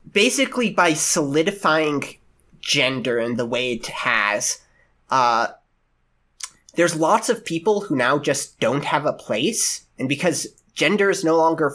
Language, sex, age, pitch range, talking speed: English, male, 30-49, 125-165 Hz, 140 wpm